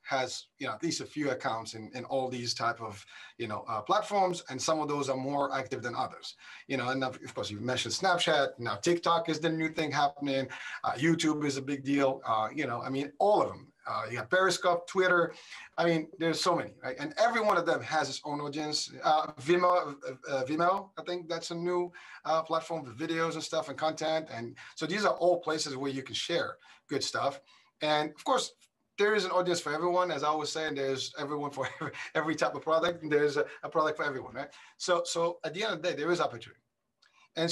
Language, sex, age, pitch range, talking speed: English, male, 30-49, 130-165 Hz, 235 wpm